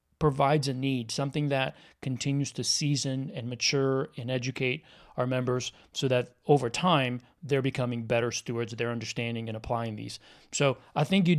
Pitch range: 125-145 Hz